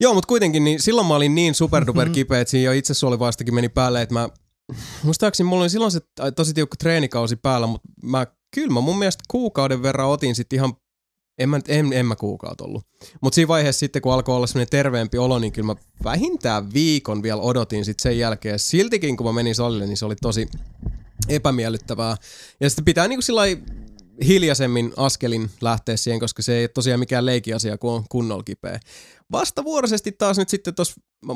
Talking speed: 190 wpm